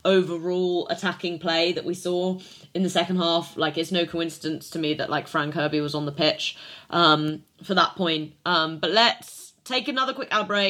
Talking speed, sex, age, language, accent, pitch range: 195 wpm, female, 20-39, English, British, 170-200 Hz